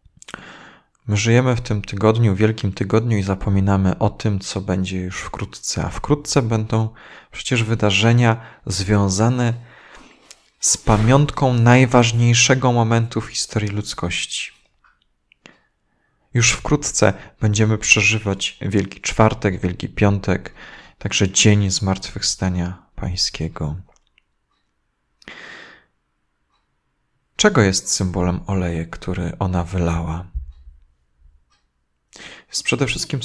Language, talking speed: Polish, 90 wpm